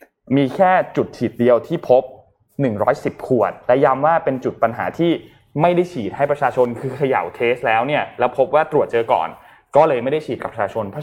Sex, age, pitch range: male, 20-39, 120-150 Hz